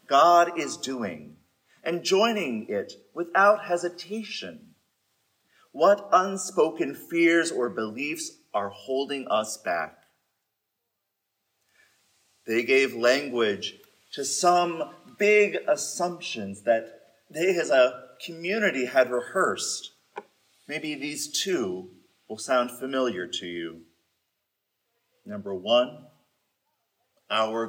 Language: English